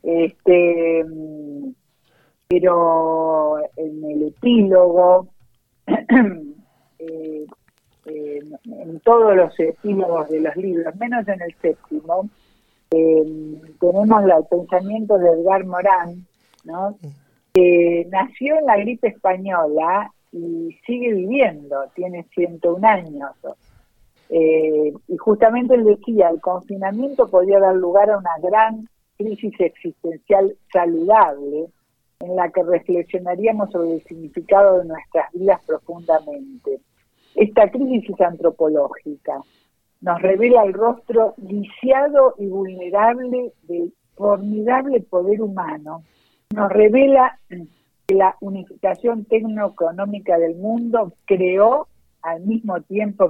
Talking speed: 105 wpm